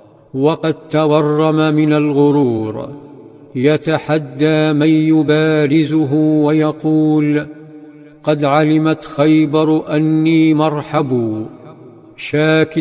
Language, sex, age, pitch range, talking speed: Arabic, male, 50-69, 145-155 Hz, 65 wpm